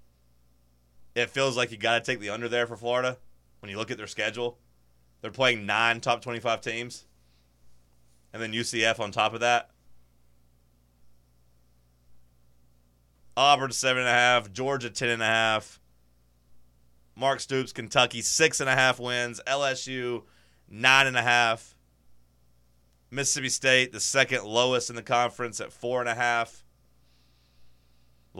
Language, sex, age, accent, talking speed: English, male, 30-49, American, 110 wpm